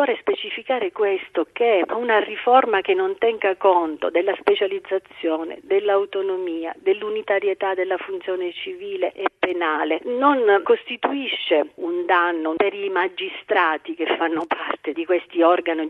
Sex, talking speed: female, 120 wpm